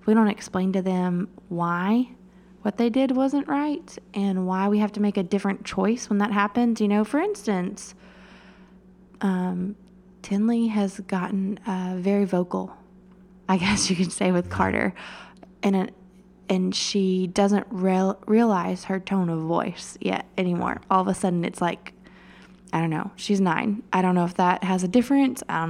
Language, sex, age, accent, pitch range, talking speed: English, female, 20-39, American, 185-210 Hz, 175 wpm